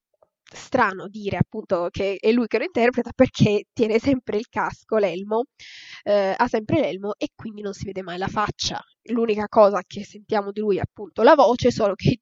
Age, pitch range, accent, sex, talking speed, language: 10-29, 200-245 Hz, native, female, 195 wpm, Italian